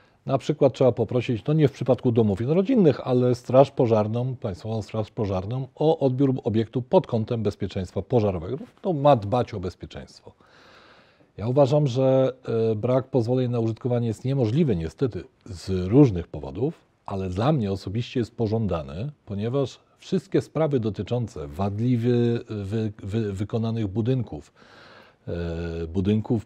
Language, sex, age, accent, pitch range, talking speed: Polish, male, 40-59, native, 100-130 Hz, 135 wpm